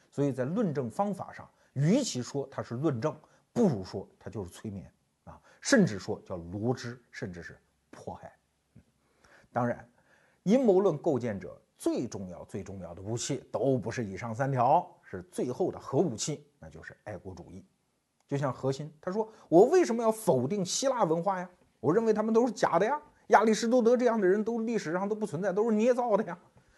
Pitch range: 135-210 Hz